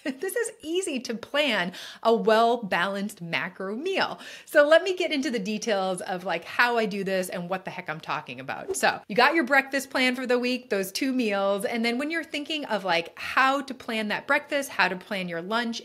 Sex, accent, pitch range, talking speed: female, American, 195-260 Hz, 220 wpm